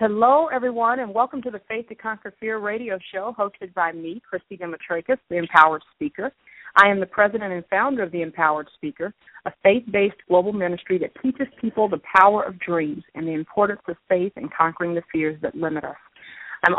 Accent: American